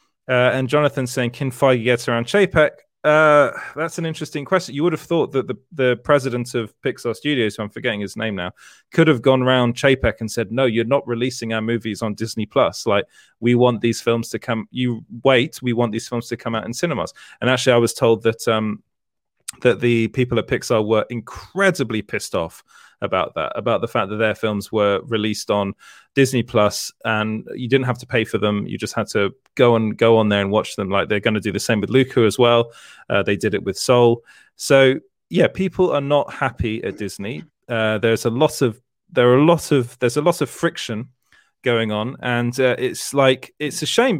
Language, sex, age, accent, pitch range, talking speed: English, male, 30-49, British, 115-145 Hz, 220 wpm